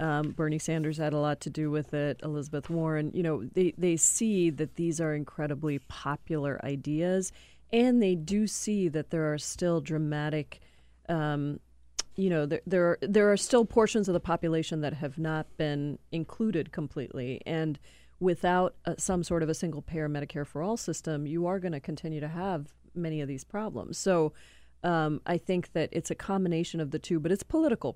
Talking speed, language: 190 wpm, English